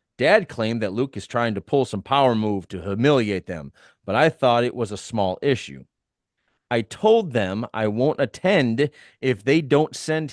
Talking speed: 185 wpm